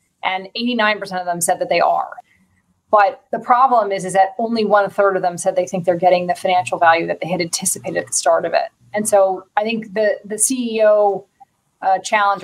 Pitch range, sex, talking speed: 180-215 Hz, female, 215 wpm